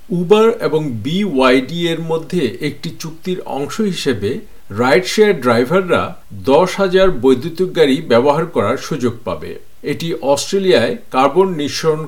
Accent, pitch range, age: native, 125-185 Hz, 50-69